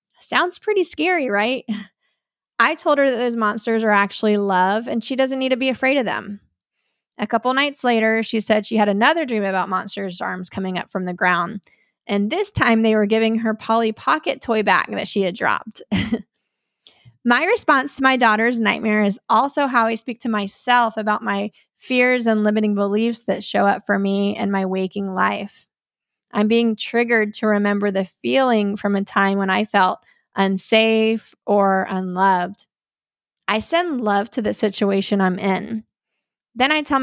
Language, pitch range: English, 200-240 Hz